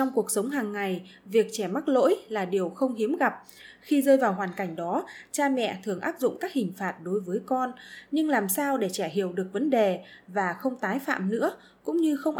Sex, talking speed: female, 230 wpm